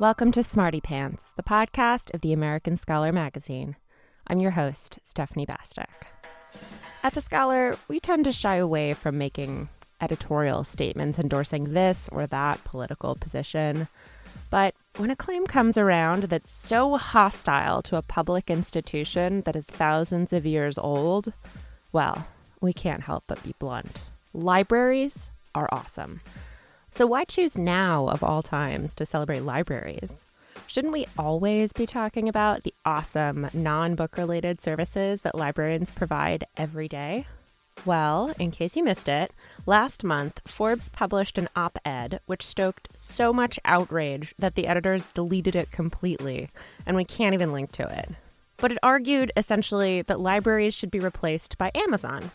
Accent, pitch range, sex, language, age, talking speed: American, 155-215 Hz, female, English, 20-39, 150 wpm